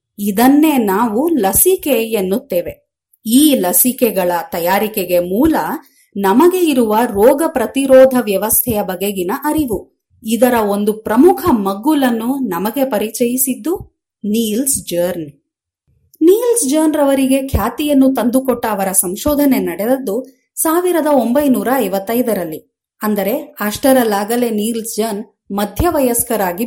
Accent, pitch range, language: native, 210-285 Hz, Kannada